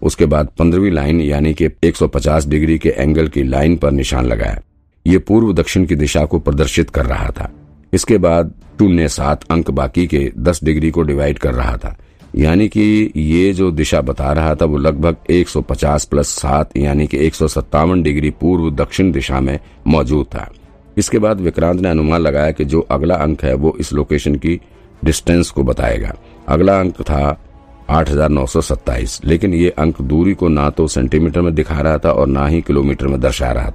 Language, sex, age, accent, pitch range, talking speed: Hindi, male, 50-69, native, 75-85 Hz, 180 wpm